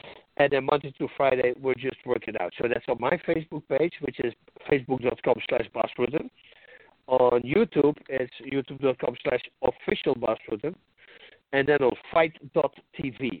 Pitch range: 120-150 Hz